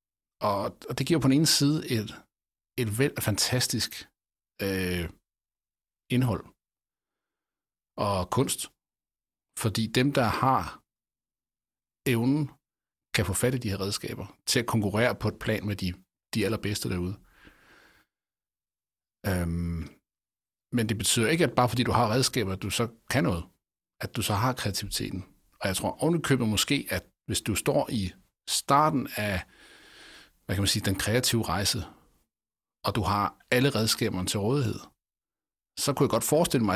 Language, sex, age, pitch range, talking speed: Danish, male, 60-79, 100-125 Hz, 150 wpm